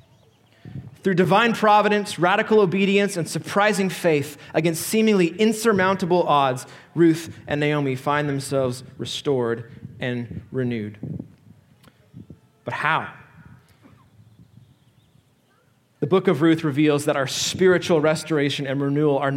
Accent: American